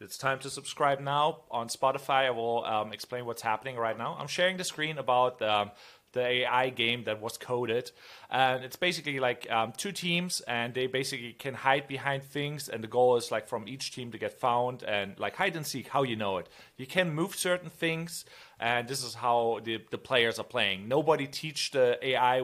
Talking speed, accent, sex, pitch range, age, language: 210 wpm, German, male, 120-145 Hz, 30-49, English